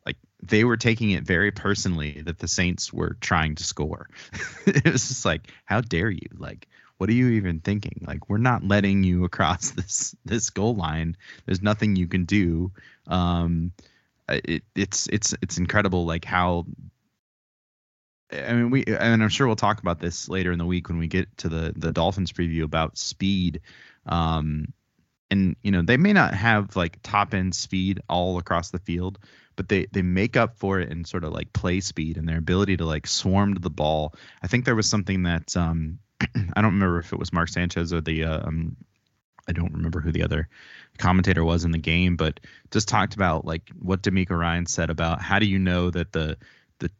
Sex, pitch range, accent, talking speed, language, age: male, 80-100 Hz, American, 205 wpm, English, 20-39